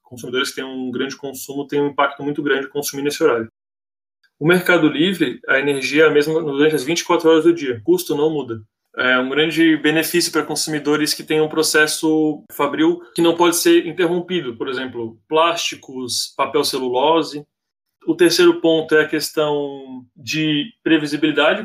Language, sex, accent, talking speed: Portuguese, male, Brazilian, 160 wpm